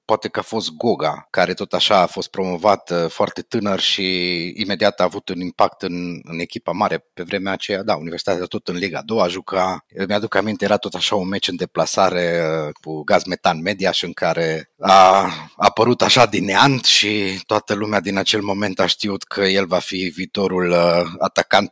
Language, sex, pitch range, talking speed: Romanian, male, 95-150 Hz, 190 wpm